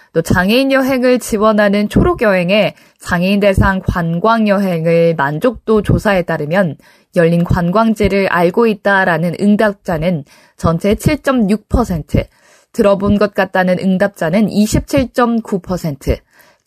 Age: 20-39